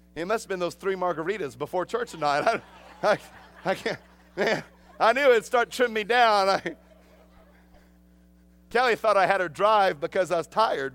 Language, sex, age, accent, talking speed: English, male, 40-59, American, 185 wpm